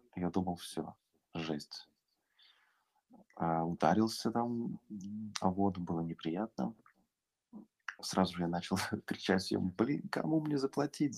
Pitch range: 85-105 Hz